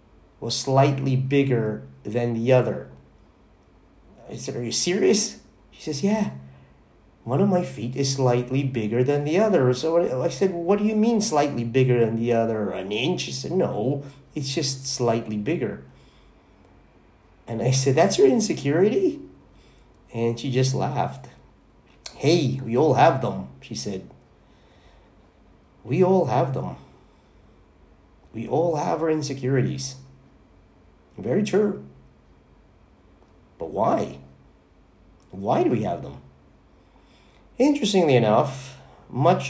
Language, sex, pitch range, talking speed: English, male, 95-140 Hz, 125 wpm